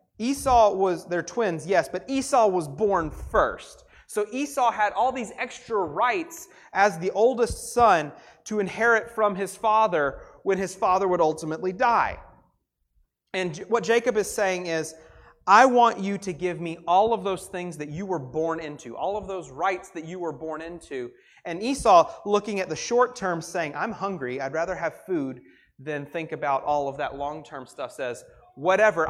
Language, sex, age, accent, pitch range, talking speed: English, male, 30-49, American, 165-225 Hz, 180 wpm